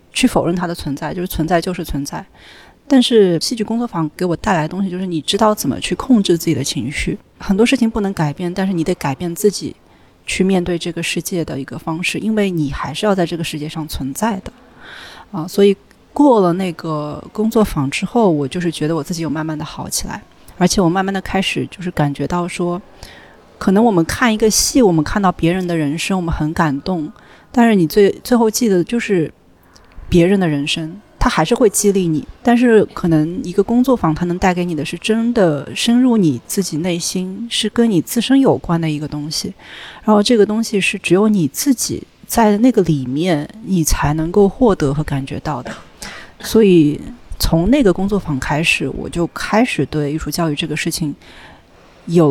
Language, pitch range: Chinese, 155-210 Hz